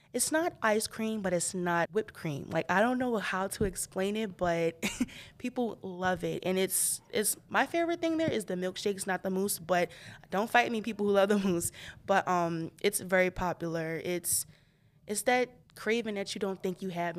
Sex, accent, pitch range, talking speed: female, American, 170-205 Hz, 205 wpm